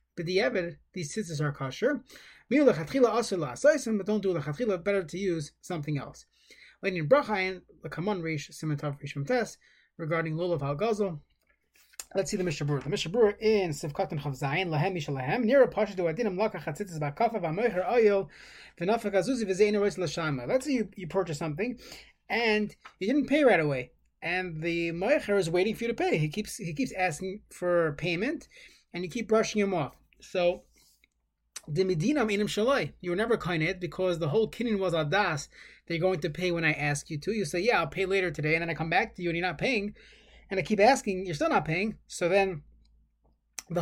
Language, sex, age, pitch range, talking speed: English, male, 20-39, 165-215 Hz, 145 wpm